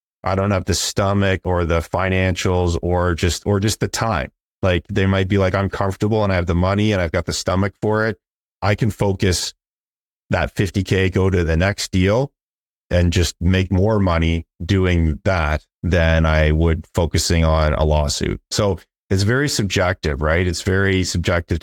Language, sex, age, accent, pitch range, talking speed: English, male, 30-49, American, 85-100 Hz, 180 wpm